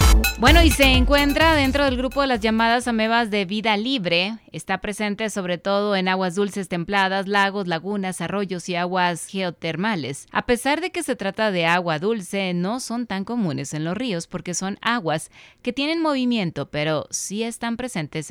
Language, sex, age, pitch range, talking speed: Spanish, female, 20-39, 165-210 Hz, 175 wpm